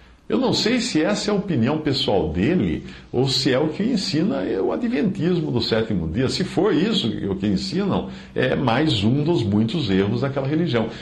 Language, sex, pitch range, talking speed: Portuguese, male, 90-130 Hz, 190 wpm